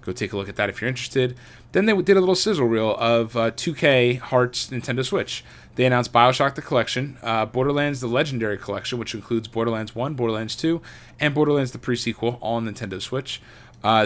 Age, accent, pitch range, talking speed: 20-39, American, 105-120 Hz, 200 wpm